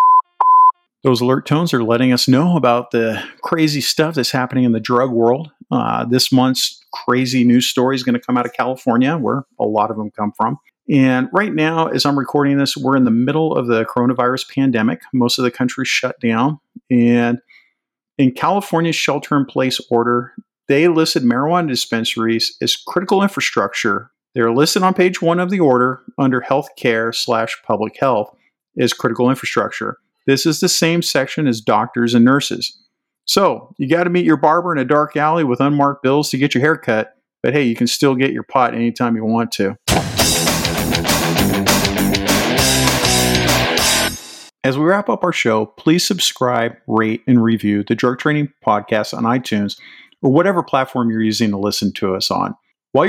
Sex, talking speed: male, 175 wpm